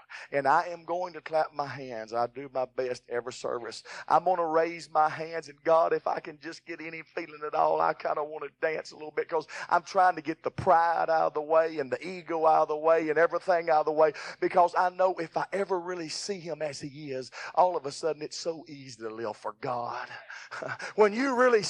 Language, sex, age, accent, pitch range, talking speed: English, male, 40-59, American, 175-275 Hz, 250 wpm